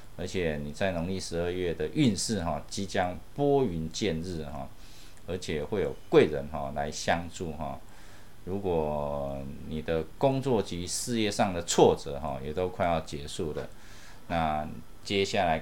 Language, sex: Chinese, male